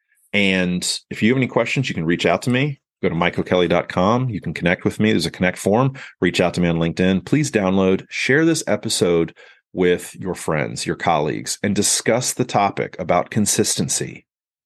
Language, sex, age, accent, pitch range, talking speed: English, male, 30-49, American, 90-110 Hz, 190 wpm